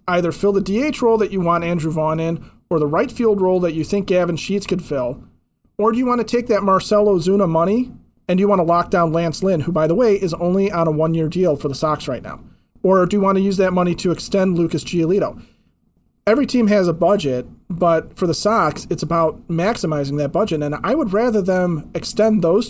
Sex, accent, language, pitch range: male, American, English, 155-200 Hz